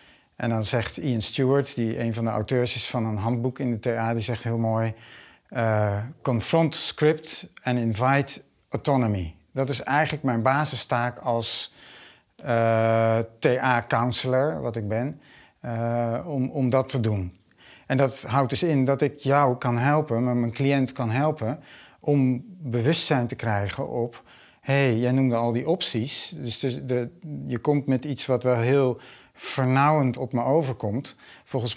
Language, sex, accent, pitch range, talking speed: Dutch, male, Dutch, 115-140 Hz, 155 wpm